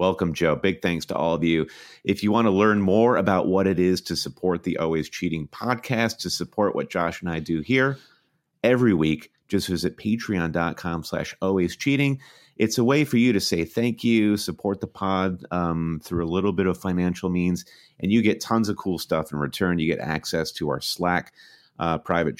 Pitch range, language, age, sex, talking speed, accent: 85-105 Hz, English, 30-49, male, 205 wpm, American